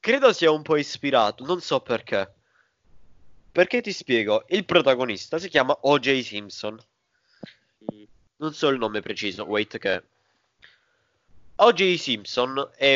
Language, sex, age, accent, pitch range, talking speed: Italian, male, 20-39, native, 105-145 Hz, 125 wpm